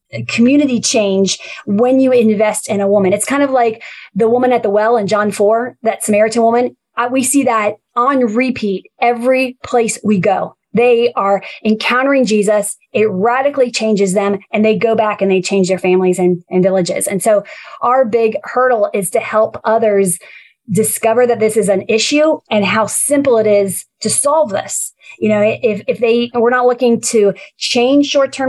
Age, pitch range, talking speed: 30-49, 210-255 Hz, 180 wpm